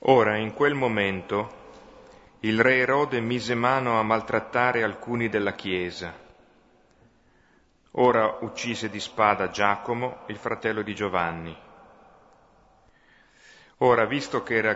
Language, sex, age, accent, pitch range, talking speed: Italian, male, 40-59, native, 95-115 Hz, 110 wpm